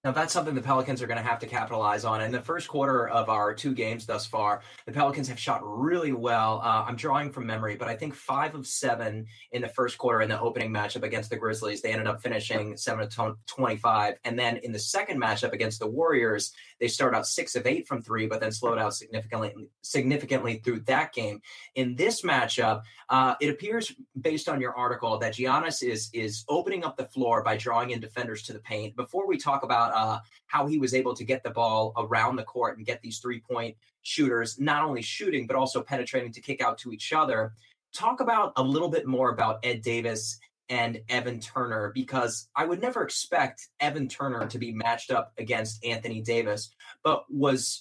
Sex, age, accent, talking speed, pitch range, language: male, 20-39, American, 215 wpm, 110-135 Hz, English